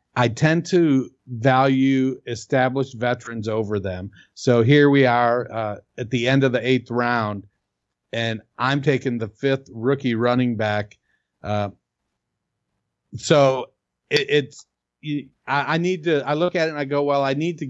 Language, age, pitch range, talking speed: English, 50-69, 120-145 Hz, 155 wpm